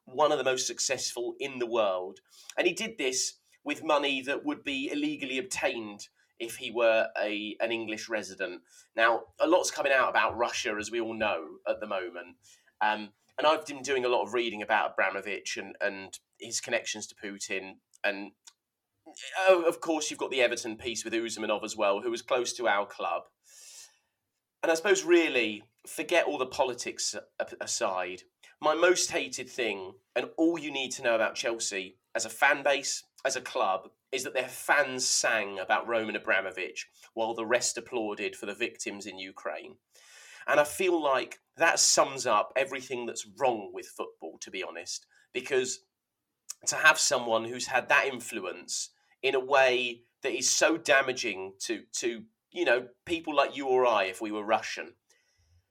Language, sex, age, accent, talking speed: English, male, 30-49, British, 175 wpm